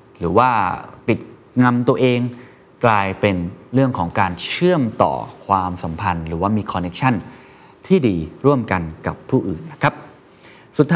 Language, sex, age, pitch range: Thai, male, 20-39, 95-130 Hz